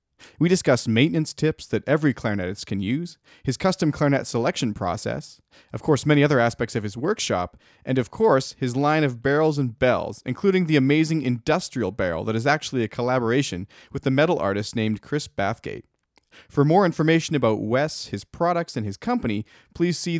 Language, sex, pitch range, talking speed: English, male, 115-155 Hz, 180 wpm